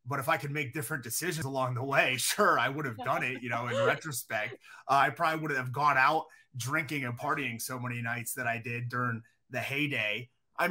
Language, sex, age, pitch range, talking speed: English, male, 30-49, 140-180 Hz, 230 wpm